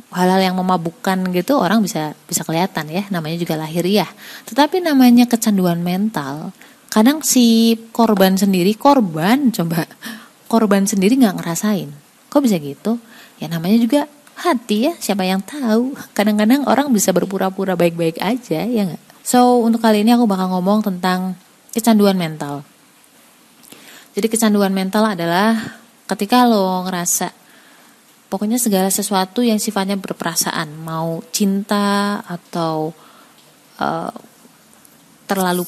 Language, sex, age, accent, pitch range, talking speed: Indonesian, female, 30-49, native, 185-245 Hz, 125 wpm